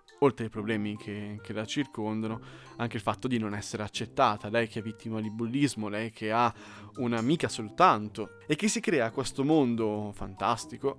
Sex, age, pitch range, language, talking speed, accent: male, 20-39, 105-125 Hz, Italian, 175 wpm, native